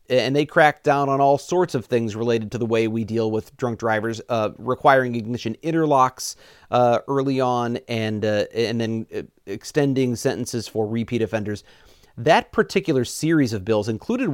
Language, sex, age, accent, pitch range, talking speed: English, male, 40-59, American, 110-145 Hz, 165 wpm